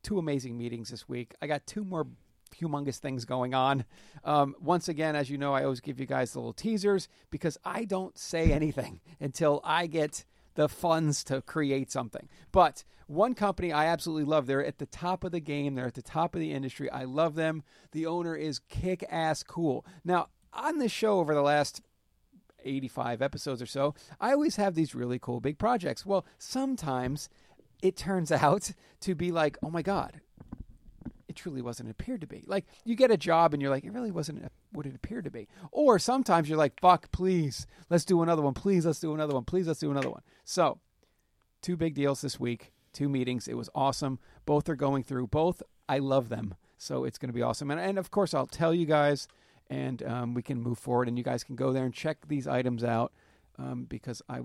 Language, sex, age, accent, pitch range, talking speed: English, male, 40-59, American, 130-170 Hz, 215 wpm